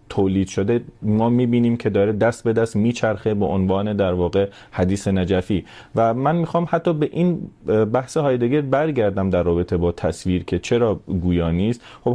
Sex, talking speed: male, 170 wpm